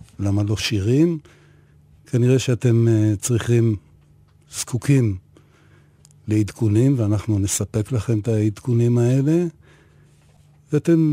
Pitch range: 100-125 Hz